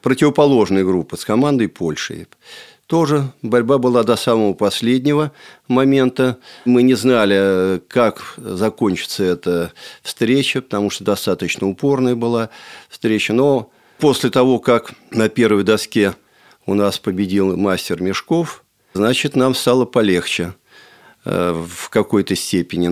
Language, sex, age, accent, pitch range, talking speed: Russian, male, 50-69, native, 95-125 Hz, 115 wpm